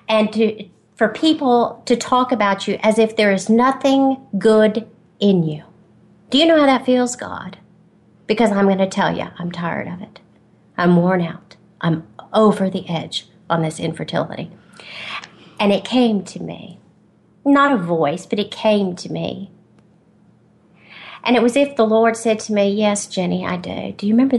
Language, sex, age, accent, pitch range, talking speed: English, female, 40-59, American, 170-220 Hz, 175 wpm